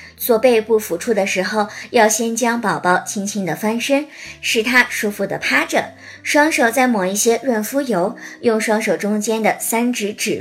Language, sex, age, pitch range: Chinese, male, 50-69, 190-255 Hz